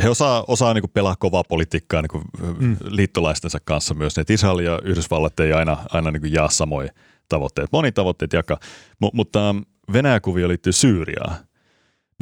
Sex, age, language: male, 30-49, Finnish